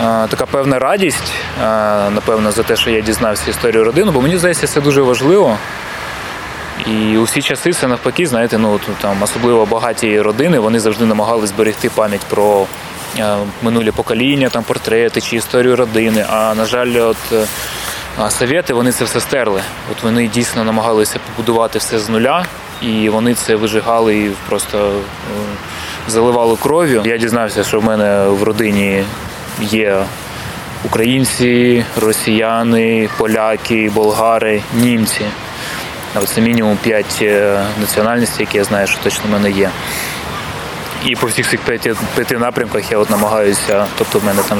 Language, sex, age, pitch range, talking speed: Ukrainian, male, 20-39, 105-115 Hz, 140 wpm